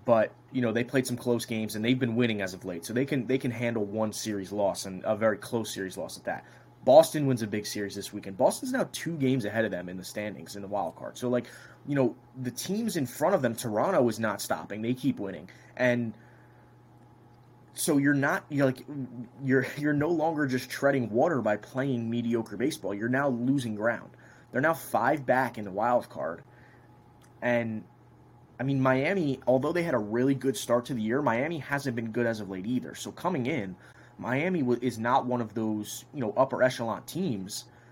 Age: 20-39